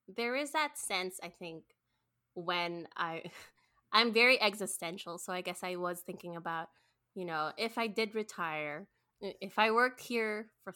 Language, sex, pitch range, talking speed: English, female, 170-215 Hz, 160 wpm